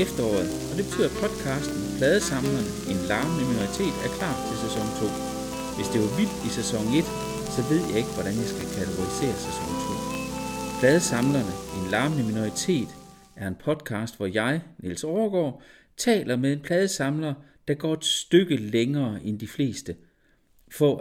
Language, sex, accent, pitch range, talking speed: Danish, male, native, 105-155 Hz, 165 wpm